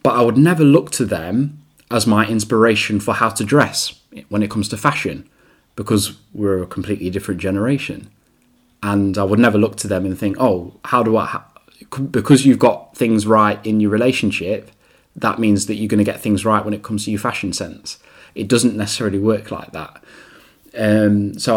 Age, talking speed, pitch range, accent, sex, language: 10-29, 195 wpm, 100-110 Hz, British, male, English